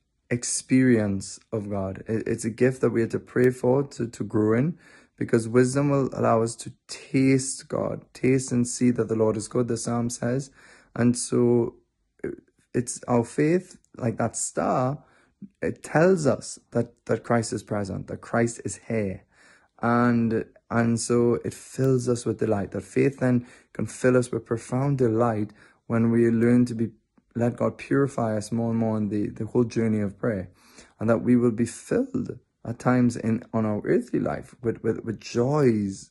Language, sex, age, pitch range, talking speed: English, male, 20-39, 110-125 Hz, 180 wpm